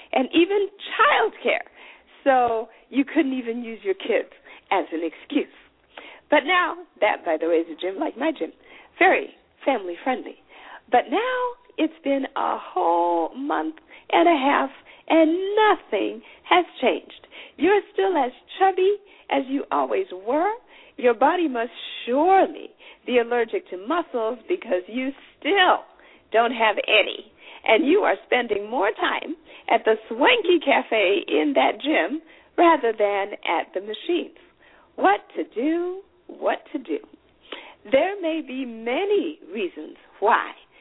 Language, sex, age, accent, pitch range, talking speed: English, female, 50-69, American, 230-370 Hz, 140 wpm